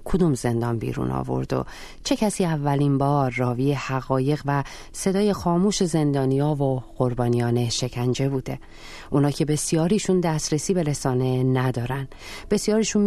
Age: 40-59